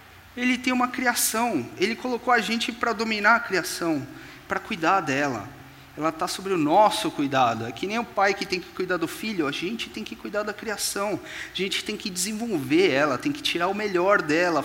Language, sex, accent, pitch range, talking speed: Portuguese, male, Brazilian, 170-240 Hz, 210 wpm